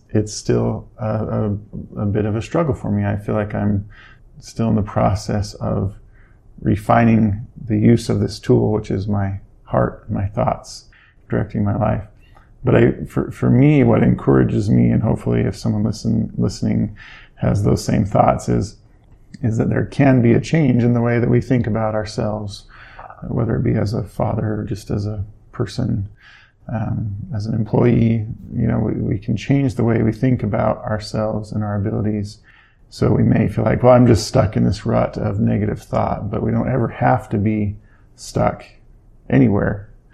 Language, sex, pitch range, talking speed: English, male, 105-115 Hz, 185 wpm